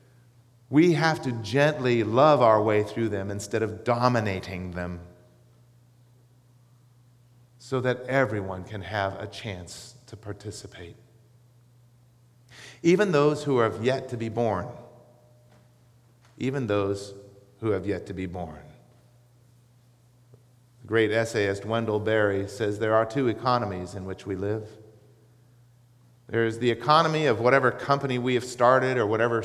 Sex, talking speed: male, 130 wpm